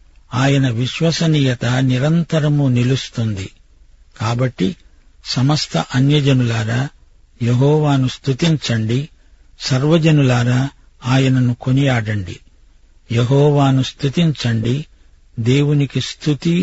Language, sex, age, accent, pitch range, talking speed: Telugu, male, 50-69, native, 115-145 Hz, 60 wpm